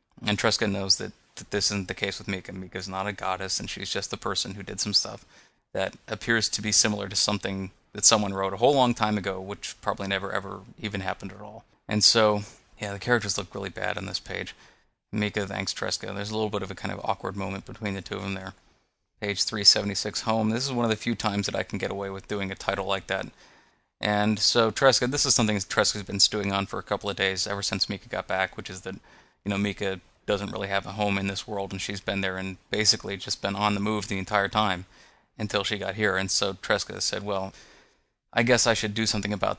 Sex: male